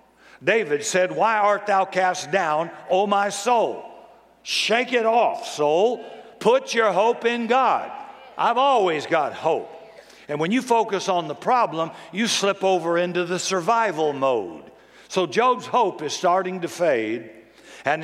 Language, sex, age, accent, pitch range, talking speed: English, male, 60-79, American, 140-195 Hz, 150 wpm